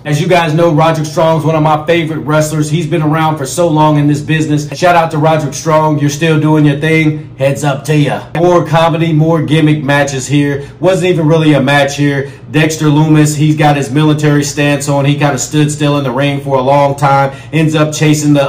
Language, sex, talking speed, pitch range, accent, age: English, male, 225 wpm, 140-165 Hz, American, 40-59